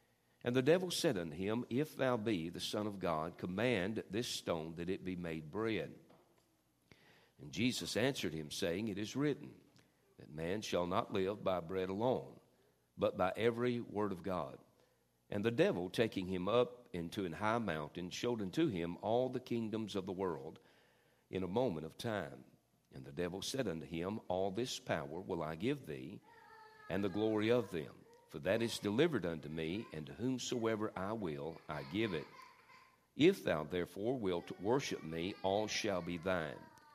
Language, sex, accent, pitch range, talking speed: English, male, American, 85-120 Hz, 175 wpm